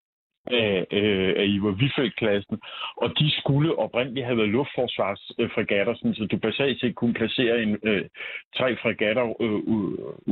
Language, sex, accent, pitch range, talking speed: Danish, male, native, 105-125 Hz, 140 wpm